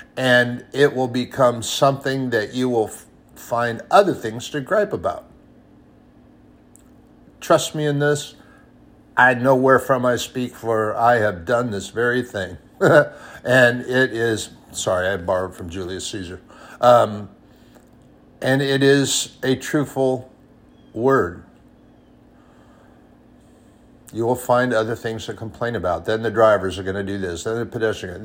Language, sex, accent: English, male, American